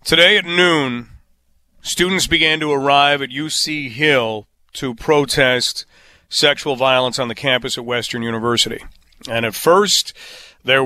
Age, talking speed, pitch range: 40-59, 135 wpm, 120-145 Hz